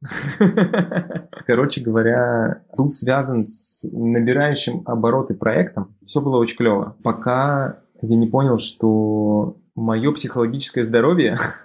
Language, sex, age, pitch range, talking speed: Russian, male, 20-39, 105-130 Hz, 105 wpm